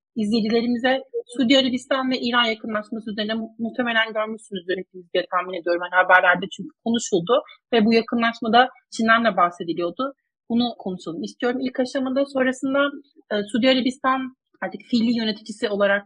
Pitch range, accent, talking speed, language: 200-250 Hz, native, 130 wpm, Turkish